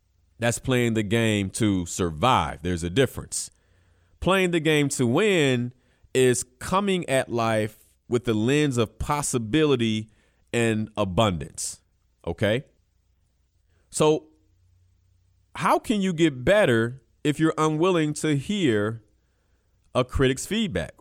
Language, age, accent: English, 40-59, American